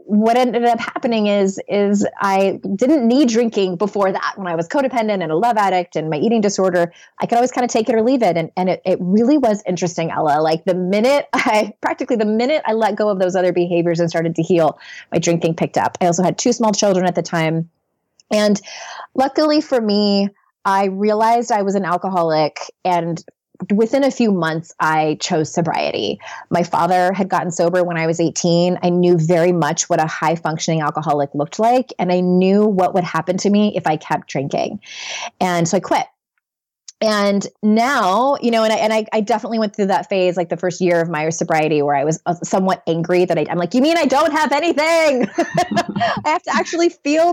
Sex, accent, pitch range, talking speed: female, American, 175-235 Hz, 210 wpm